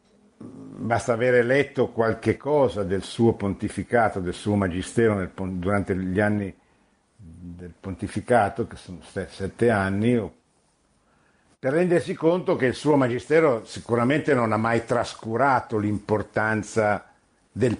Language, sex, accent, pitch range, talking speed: Italian, male, native, 95-125 Hz, 115 wpm